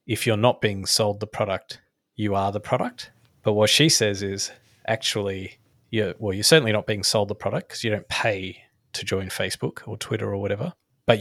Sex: male